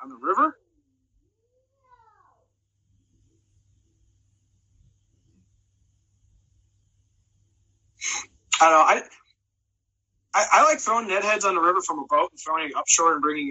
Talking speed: 115 wpm